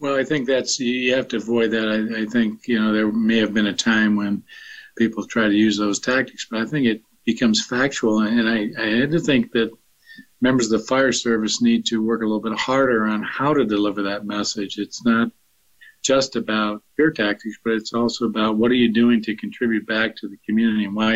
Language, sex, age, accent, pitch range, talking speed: English, male, 50-69, American, 105-115 Hz, 225 wpm